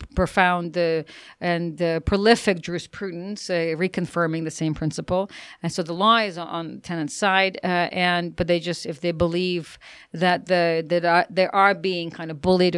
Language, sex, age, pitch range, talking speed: English, female, 40-59, 165-190 Hz, 180 wpm